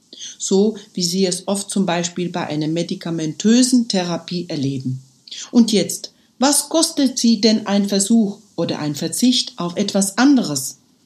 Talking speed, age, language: 140 wpm, 60-79, German